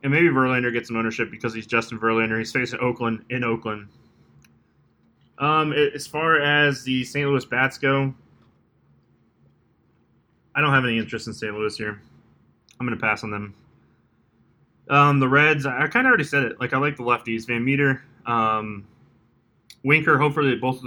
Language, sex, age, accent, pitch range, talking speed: English, male, 20-39, American, 115-135 Hz, 175 wpm